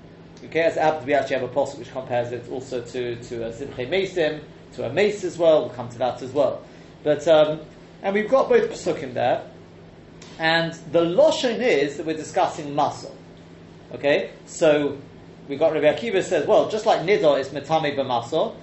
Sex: male